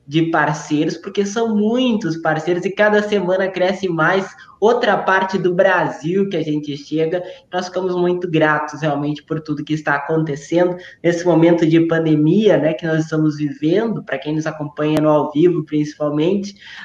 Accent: Brazilian